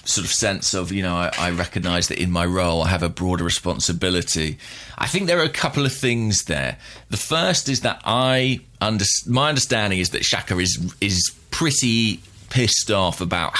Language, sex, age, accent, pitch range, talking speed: English, male, 30-49, British, 90-115 Hz, 195 wpm